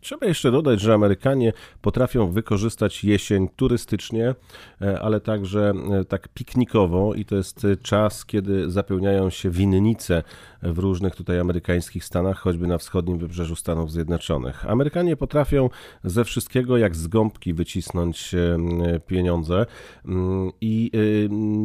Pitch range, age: 90-115 Hz, 40-59